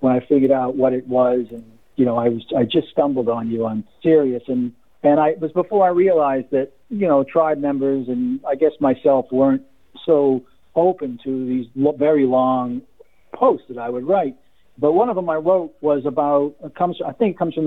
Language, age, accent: English, 50-69, American